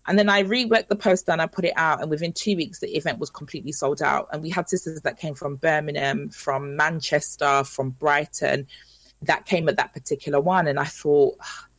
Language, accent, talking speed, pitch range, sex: English, British, 215 wpm, 155-205 Hz, female